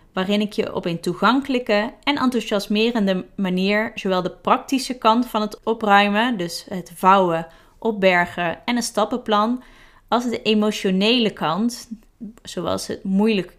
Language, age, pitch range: Dutch, 20-39, 185-230 Hz